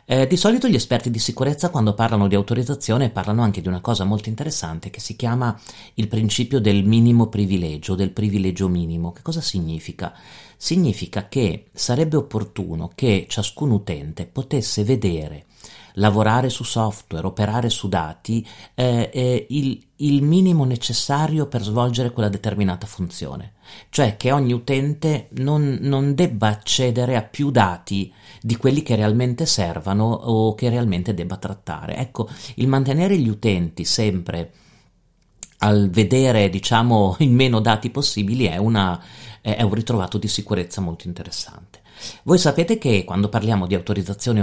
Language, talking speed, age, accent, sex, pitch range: Italian, 145 wpm, 40-59, native, male, 100-125 Hz